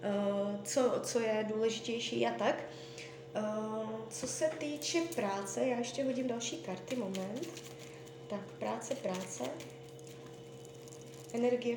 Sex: female